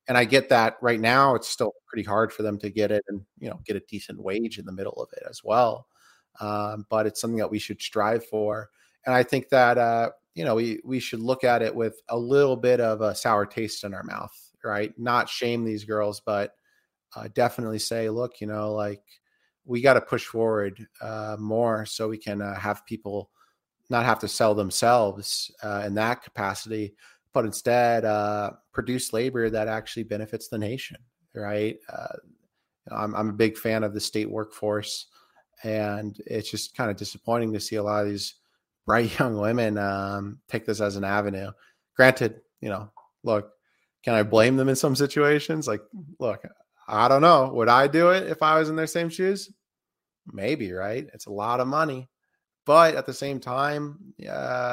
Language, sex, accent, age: English, male, American, 30-49